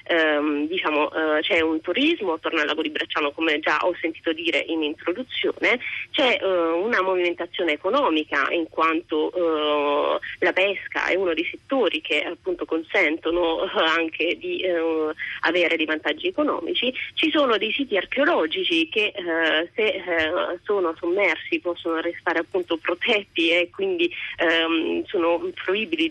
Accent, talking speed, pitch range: native, 140 wpm, 165-230 Hz